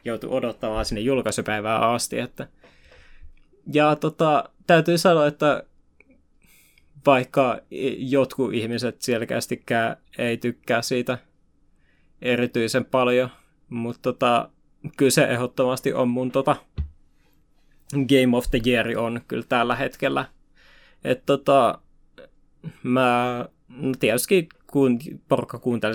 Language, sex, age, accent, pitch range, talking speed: Finnish, male, 20-39, native, 115-145 Hz, 95 wpm